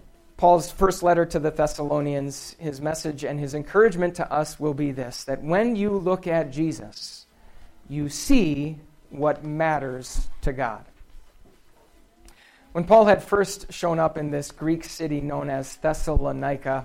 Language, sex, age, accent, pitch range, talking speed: English, male, 40-59, American, 150-195 Hz, 145 wpm